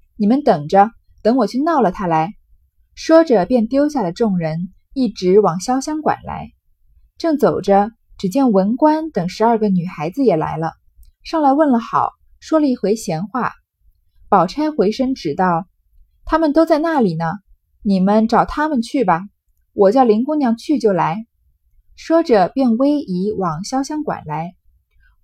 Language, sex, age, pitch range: Chinese, female, 20-39, 185-270 Hz